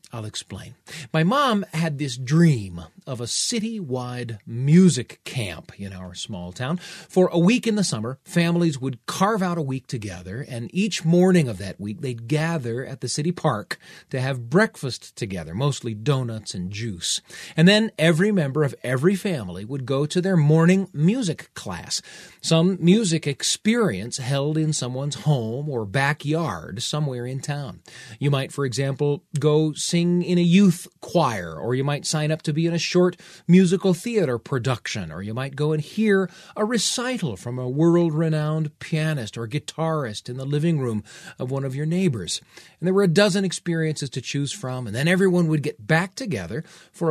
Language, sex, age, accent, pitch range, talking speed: English, male, 40-59, American, 125-175 Hz, 175 wpm